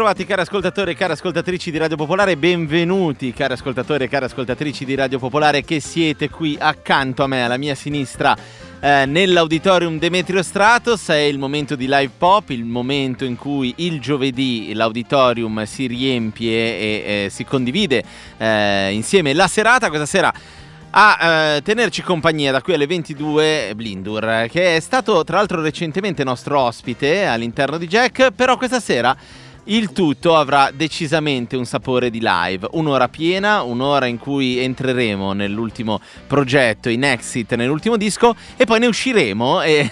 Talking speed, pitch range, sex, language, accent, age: 155 wpm, 125-175 Hz, male, Italian, native, 30-49